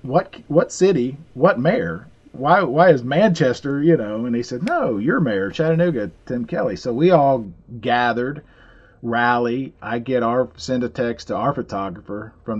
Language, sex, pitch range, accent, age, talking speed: English, male, 95-125 Hz, American, 40-59, 165 wpm